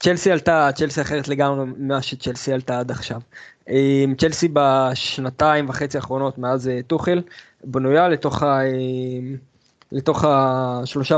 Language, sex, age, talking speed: Hebrew, male, 20-39, 100 wpm